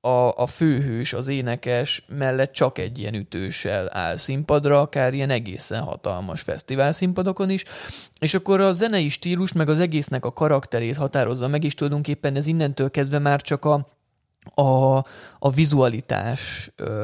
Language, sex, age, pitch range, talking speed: Hungarian, male, 20-39, 120-150 Hz, 145 wpm